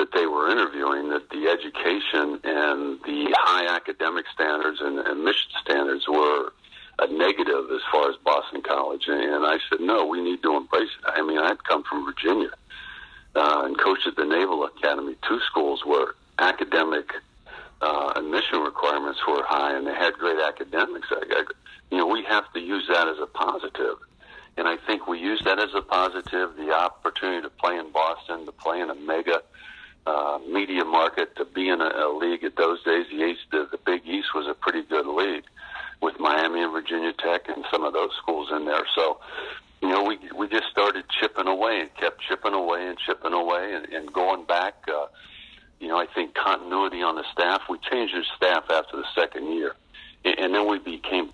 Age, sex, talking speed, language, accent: 60-79, male, 195 wpm, English, American